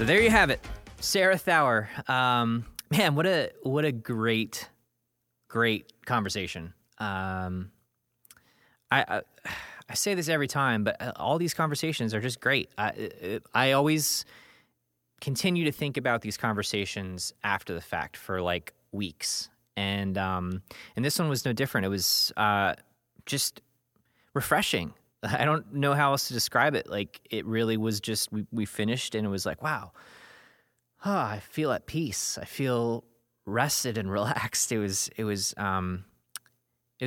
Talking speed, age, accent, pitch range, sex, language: 155 wpm, 20-39, American, 100-125 Hz, male, English